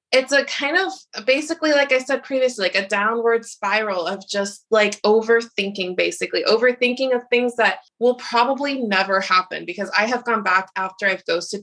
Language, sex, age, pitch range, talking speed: English, female, 20-39, 185-235 Hz, 175 wpm